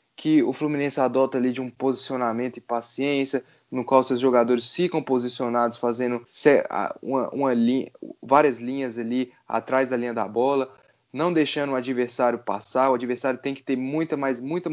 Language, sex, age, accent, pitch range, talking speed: Portuguese, male, 10-29, Brazilian, 125-170 Hz, 150 wpm